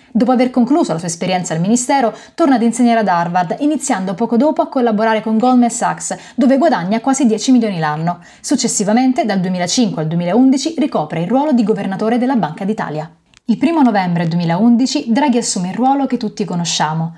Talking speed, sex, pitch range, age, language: 180 wpm, female, 180-250 Hz, 20-39, Italian